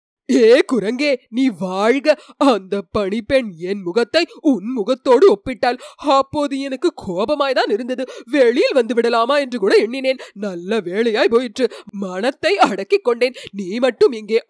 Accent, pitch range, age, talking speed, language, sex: native, 235-370 Hz, 30-49, 110 wpm, Tamil, female